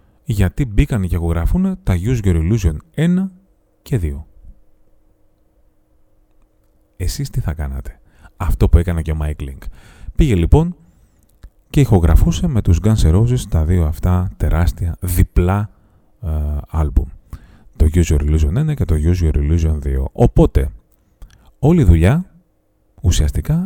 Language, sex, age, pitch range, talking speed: Greek, male, 30-49, 80-105 Hz, 135 wpm